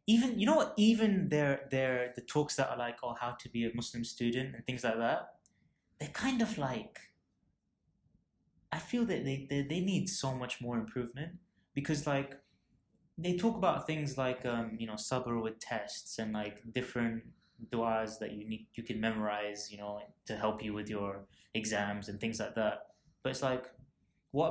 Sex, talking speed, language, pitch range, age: male, 185 wpm, English, 115-150 Hz, 20-39